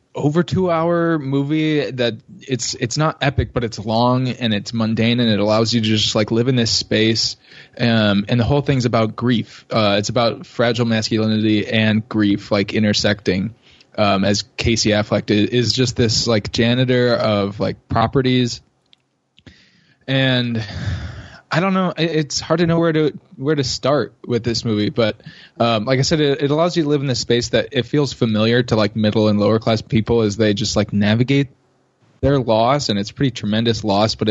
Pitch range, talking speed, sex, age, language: 105-125 Hz, 190 wpm, male, 20-39, English